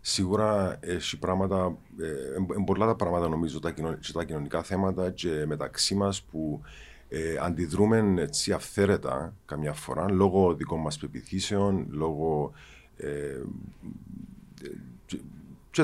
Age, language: 50-69, Greek